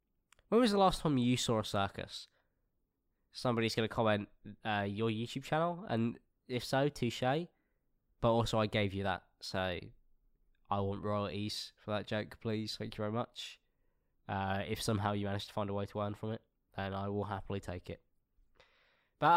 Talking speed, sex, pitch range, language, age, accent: 180 wpm, male, 100-135 Hz, English, 10-29, British